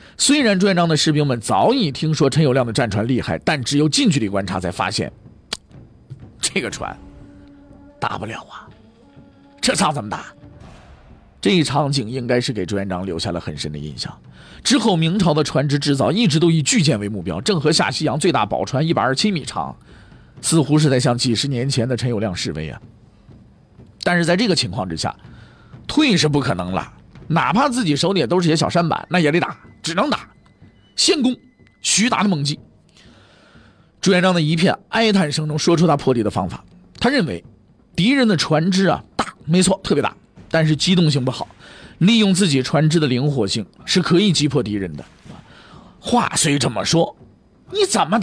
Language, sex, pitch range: Chinese, male, 115-180 Hz